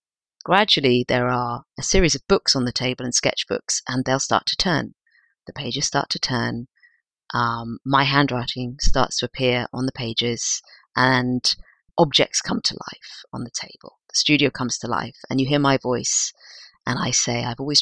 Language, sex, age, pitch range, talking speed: English, female, 40-59, 125-145 Hz, 180 wpm